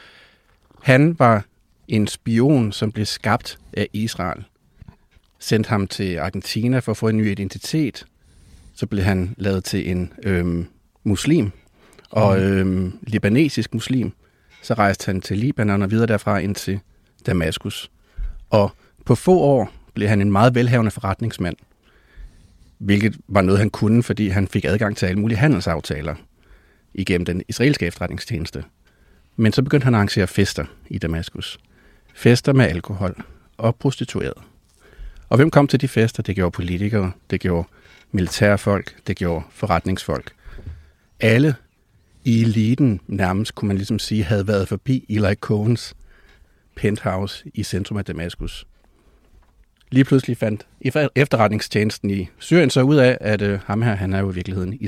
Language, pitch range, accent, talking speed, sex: Danish, 95-115 Hz, native, 145 wpm, male